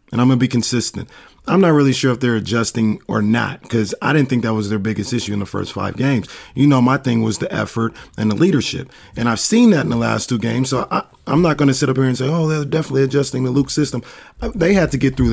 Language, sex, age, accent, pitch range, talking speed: English, male, 40-59, American, 120-150 Hz, 275 wpm